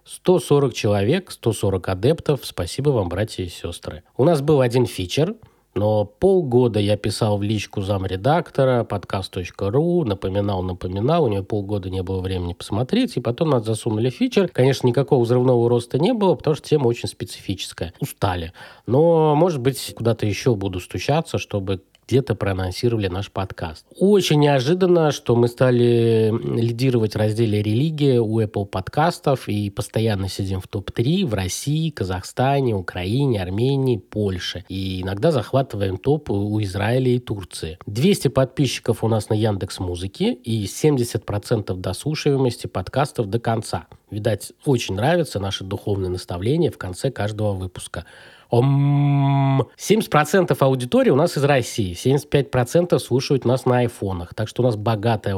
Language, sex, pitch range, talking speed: Russian, male, 100-135 Hz, 140 wpm